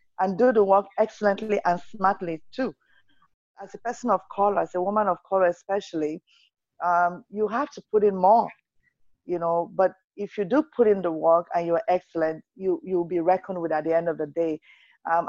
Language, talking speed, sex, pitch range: English, 200 wpm, female, 170-200 Hz